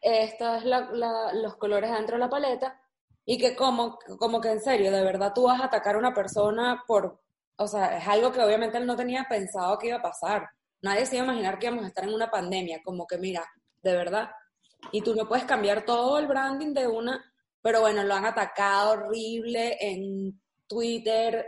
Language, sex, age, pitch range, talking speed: Spanish, female, 20-39, 190-230 Hz, 210 wpm